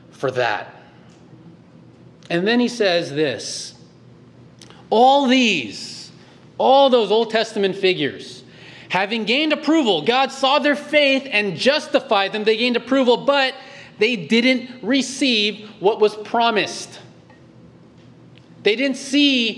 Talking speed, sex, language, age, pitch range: 115 wpm, male, English, 30-49, 195-240 Hz